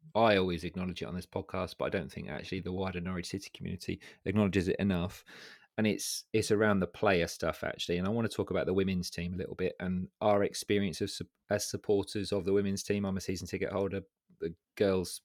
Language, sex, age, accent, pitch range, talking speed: English, male, 30-49, British, 90-100 Hz, 225 wpm